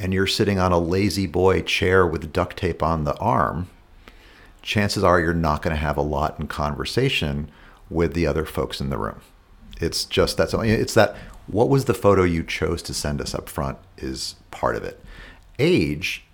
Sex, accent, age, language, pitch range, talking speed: male, American, 50-69, English, 80-100 Hz, 195 wpm